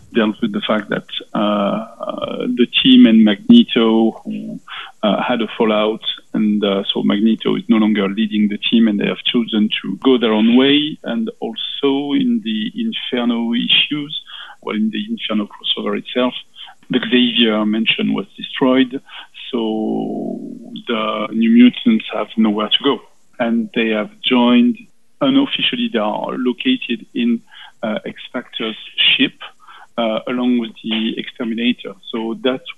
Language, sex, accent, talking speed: English, male, French, 145 wpm